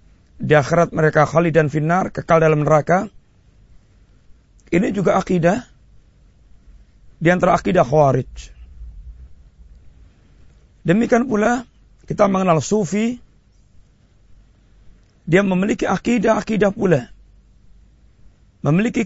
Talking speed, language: 80 wpm, Malay